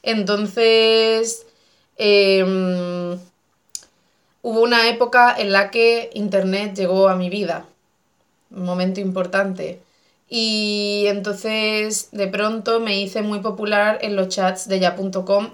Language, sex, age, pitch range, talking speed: Spanish, female, 20-39, 190-230 Hz, 110 wpm